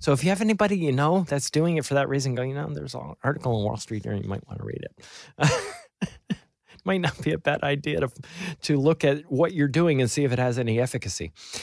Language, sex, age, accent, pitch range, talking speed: English, male, 40-59, American, 120-160 Hz, 265 wpm